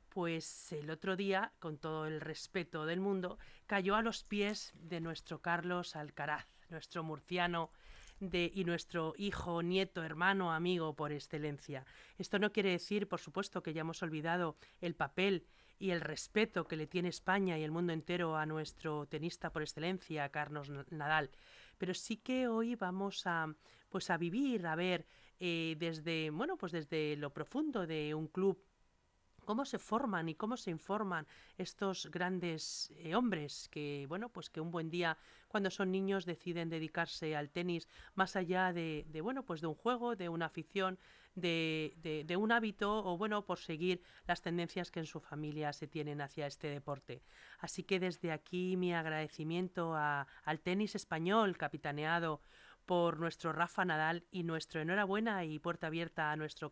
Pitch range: 155-185 Hz